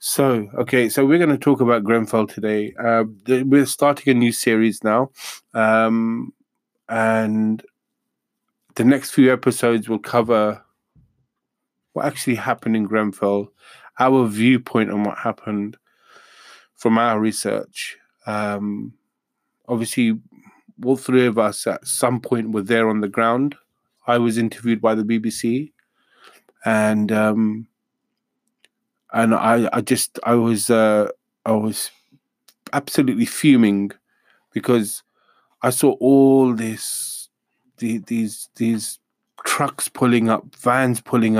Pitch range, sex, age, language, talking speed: 110-130 Hz, male, 20-39, English, 120 wpm